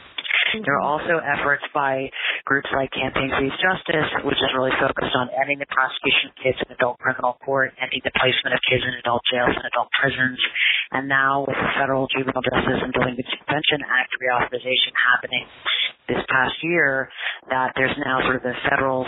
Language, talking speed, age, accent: English, 185 wpm, 30-49, American